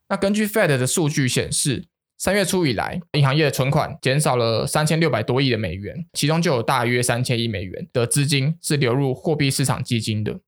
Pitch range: 125-160 Hz